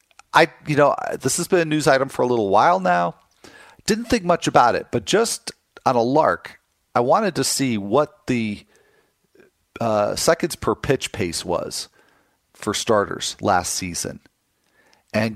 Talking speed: 160 wpm